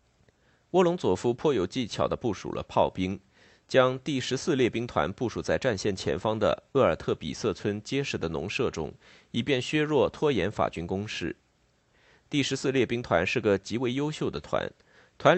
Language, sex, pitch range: Chinese, male, 100-135 Hz